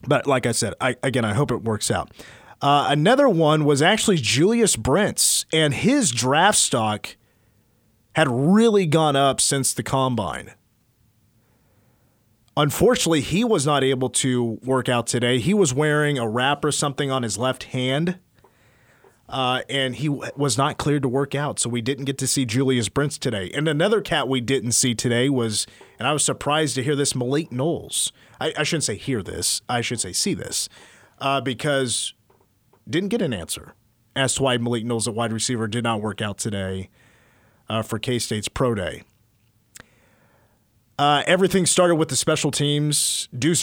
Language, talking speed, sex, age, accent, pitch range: English, 175 wpm, male, 30-49, American, 115-150 Hz